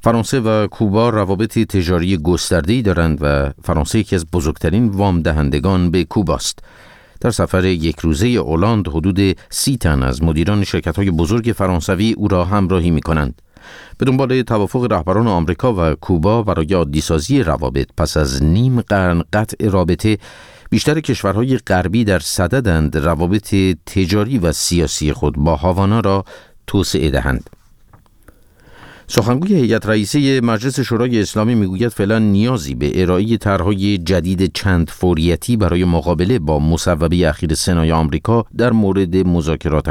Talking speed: 135 wpm